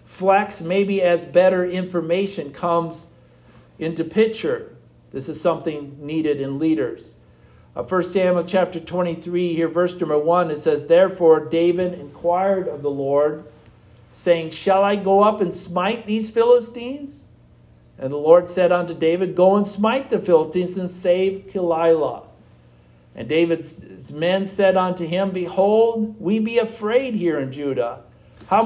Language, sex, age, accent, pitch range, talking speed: English, male, 50-69, American, 145-195 Hz, 140 wpm